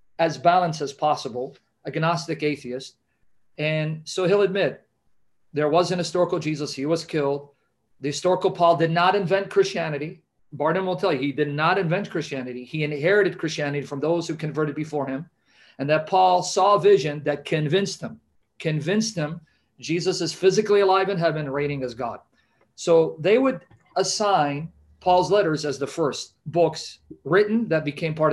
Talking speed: 165 wpm